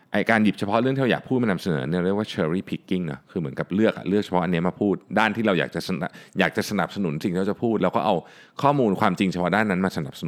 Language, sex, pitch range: Thai, male, 90-130 Hz